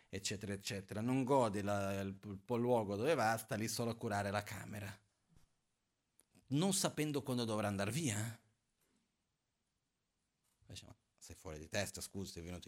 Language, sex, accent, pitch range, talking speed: Italian, male, native, 95-115 Hz, 160 wpm